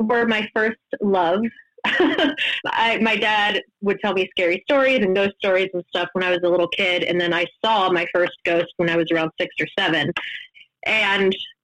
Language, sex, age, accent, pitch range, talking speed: English, female, 20-39, American, 175-230 Hz, 190 wpm